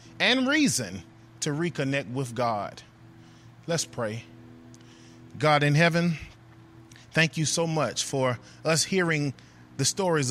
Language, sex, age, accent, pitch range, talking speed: English, male, 20-39, American, 115-150 Hz, 115 wpm